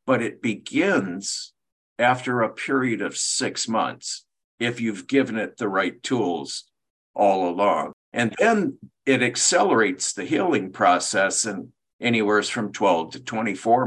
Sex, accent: male, American